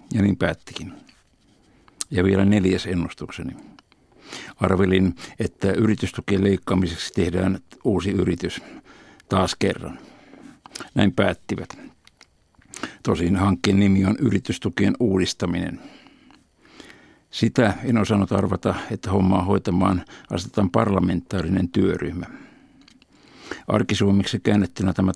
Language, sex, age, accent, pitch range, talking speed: Finnish, male, 60-79, native, 90-100 Hz, 90 wpm